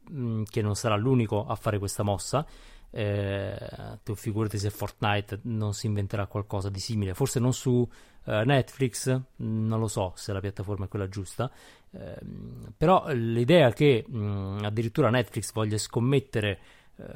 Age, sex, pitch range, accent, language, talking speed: 30-49, male, 105-125 Hz, native, Italian, 145 wpm